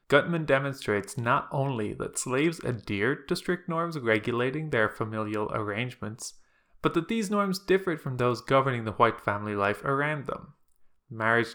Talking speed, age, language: 150 wpm, 20-39, English